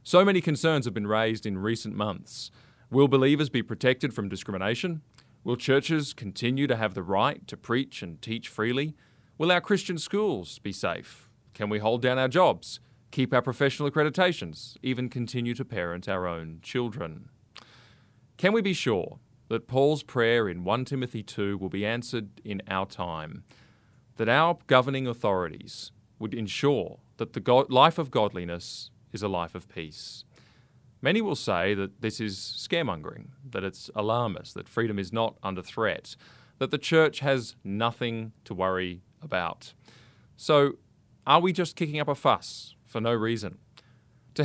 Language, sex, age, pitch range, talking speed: English, male, 30-49, 110-140 Hz, 160 wpm